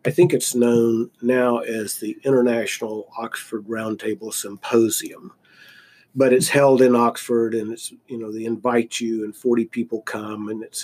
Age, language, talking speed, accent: 50-69, English, 160 wpm, American